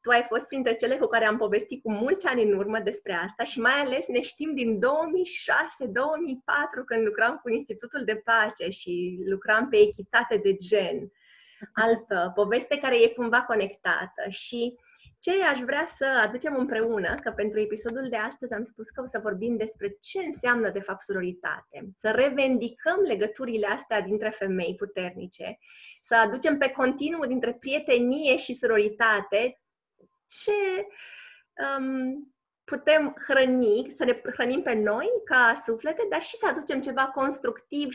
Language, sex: Romanian, female